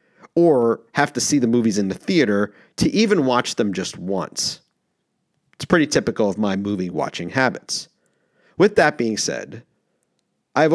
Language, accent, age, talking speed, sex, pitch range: English, American, 40-59, 150 wpm, male, 105-150 Hz